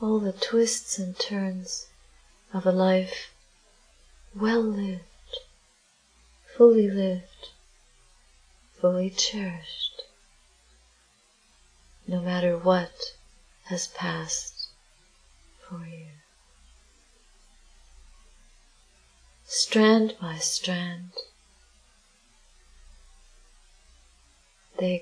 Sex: female